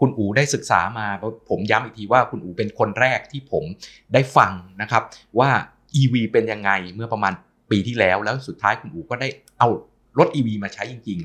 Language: Thai